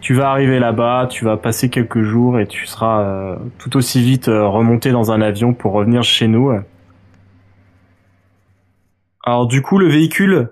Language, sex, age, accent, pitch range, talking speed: French, male, 20-39, French, 115-140 Hz, 160 wpm